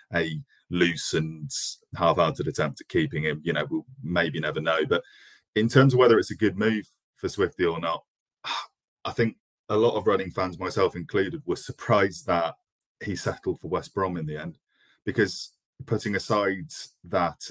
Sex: male